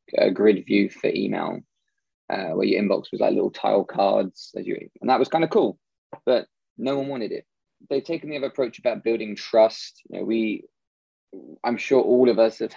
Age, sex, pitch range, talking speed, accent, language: 20-39, male, 105-135 Hz, 205 wpm, British, English